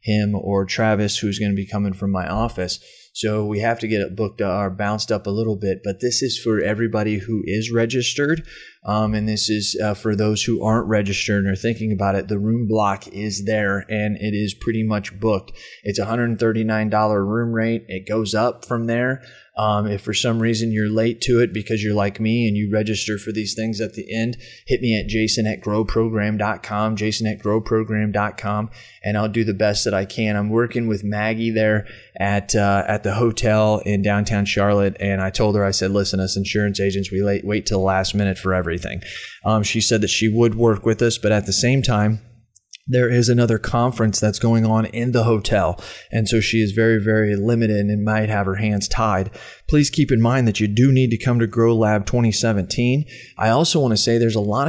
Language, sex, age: English, male, 20-39